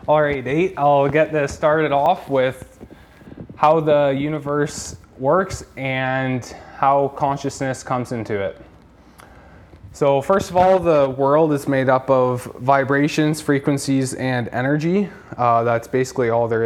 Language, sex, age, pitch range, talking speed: English, male, 20-39, 110-135 Hz, 135 wpm